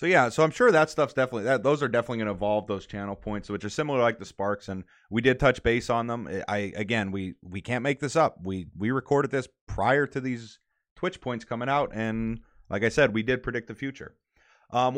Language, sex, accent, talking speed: English, male, American, 245 wpm